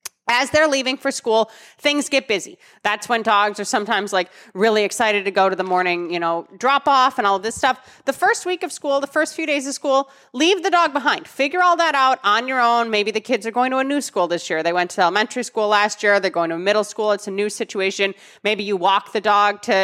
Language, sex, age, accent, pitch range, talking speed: English, female, 30-49, American, 195-260 Hz, 255 wpm